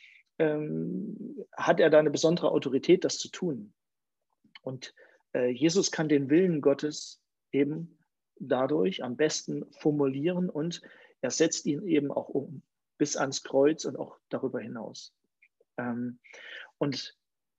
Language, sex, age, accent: German, male, 40-59, German